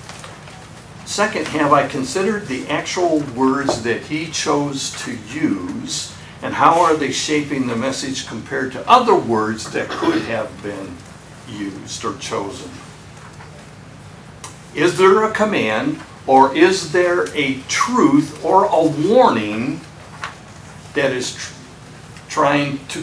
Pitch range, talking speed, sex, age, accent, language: 115-155 Hz, 120 wpm, male, 60-79, American, English